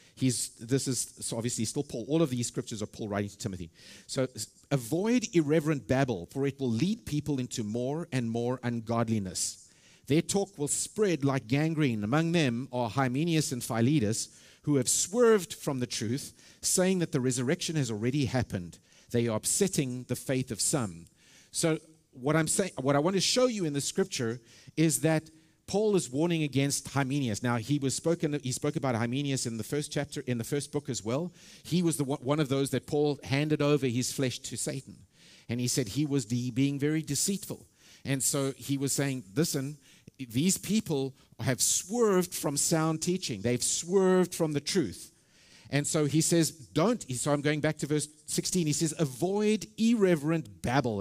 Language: English